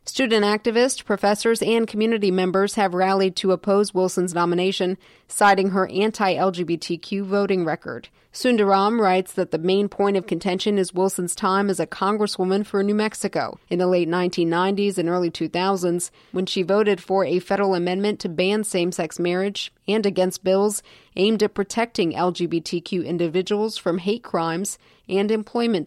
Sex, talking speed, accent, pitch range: female, 150 wpm, American, 175-205 Hz